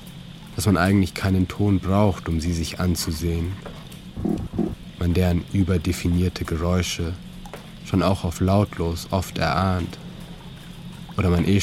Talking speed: 120 wpm